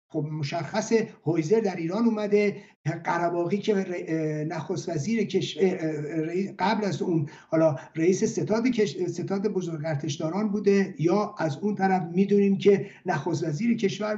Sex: male